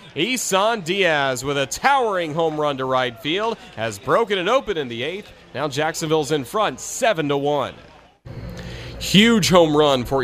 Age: 30-49